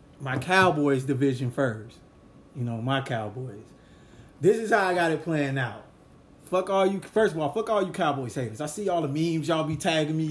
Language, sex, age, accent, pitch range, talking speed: English, male, 20-39, American, 145-195 Hz, 210 wpm